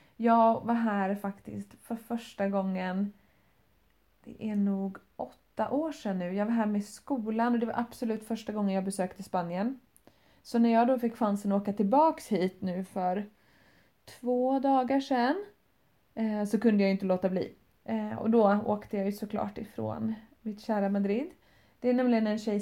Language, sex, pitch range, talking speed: English, female, 200-235 Hz, 170 wpm